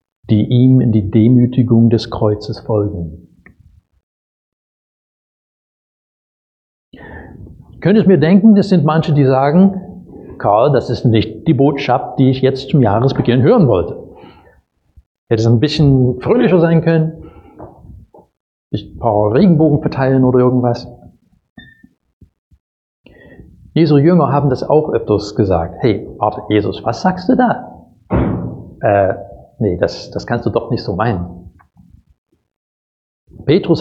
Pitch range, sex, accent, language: 100-140 Hz, male, German, German